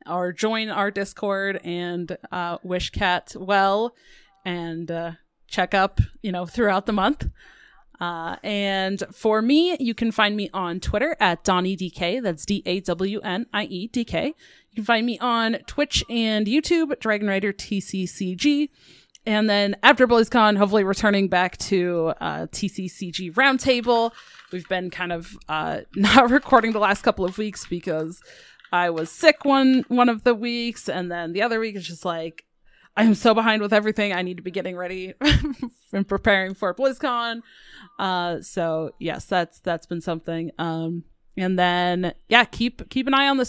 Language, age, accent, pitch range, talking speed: English, 20-39, American, 175-225 Hz, 160 wpm